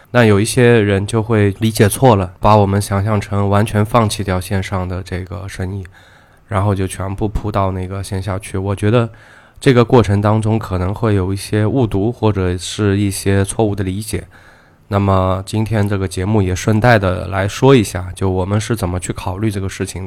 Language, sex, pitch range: Chinese, male, 95-110 Hz